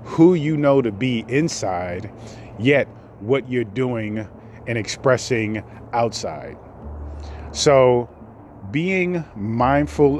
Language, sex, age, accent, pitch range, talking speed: English, male, 30-49, American, 105-125 Hz, 95 wpm